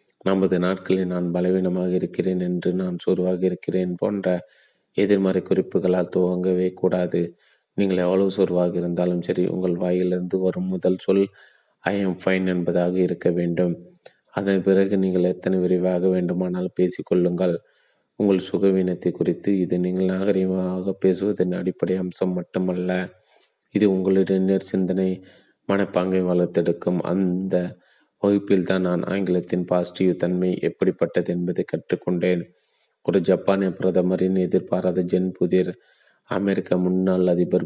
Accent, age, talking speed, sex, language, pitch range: native, 30-49, 110 wpm, male, Tamil, 90-95 Hz